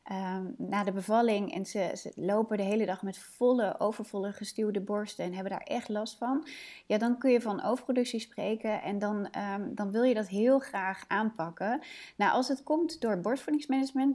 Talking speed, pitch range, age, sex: 180 wpm, 195-245 Hz, 30-49, female